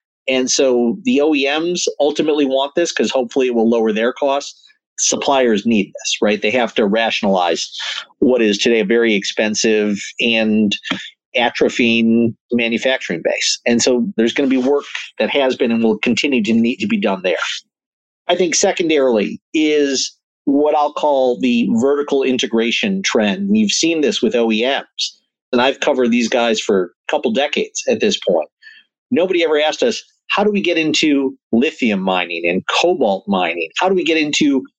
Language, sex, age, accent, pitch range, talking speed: English, male, 50-69, American, 120-190 Hz, 170 wpm